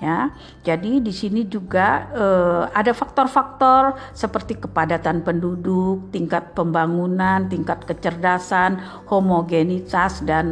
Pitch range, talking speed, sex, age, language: 170-210 Hz, 95 wpm, female, 50-69, Indonesian